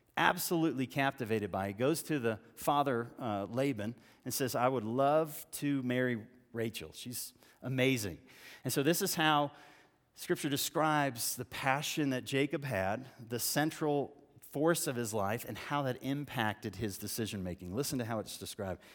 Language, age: English, 40-59